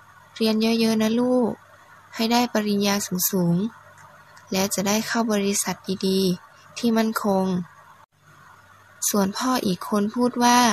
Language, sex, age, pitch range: Thai, female, 20-39, 195-230 Hz